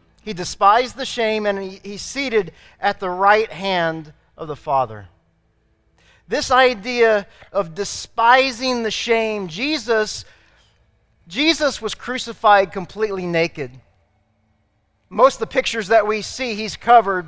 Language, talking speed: English, 125 wpm